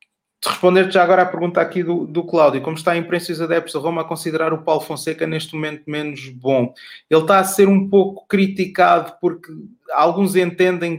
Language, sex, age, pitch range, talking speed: Portuguese, male, 20-39, 145-170 Hz, 205 wpm